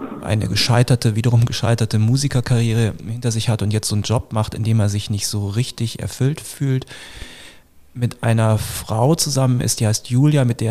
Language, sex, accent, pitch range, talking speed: German, male, German, 105-125 Hz, 185 wpm